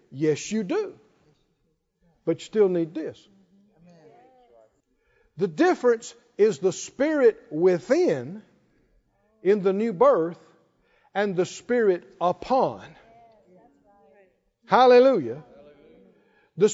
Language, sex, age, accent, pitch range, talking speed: English, male, 50-69, American, 200-295 Hz, 85 wpm